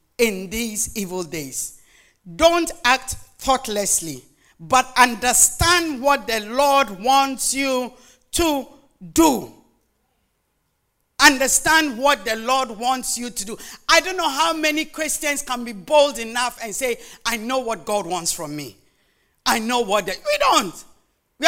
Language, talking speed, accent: English, 135 wpm, Nigerian